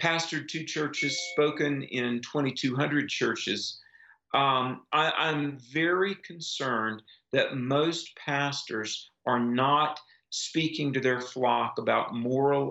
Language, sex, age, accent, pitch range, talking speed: English, male, 50-69, American, 120-150 Hz, 110 wpm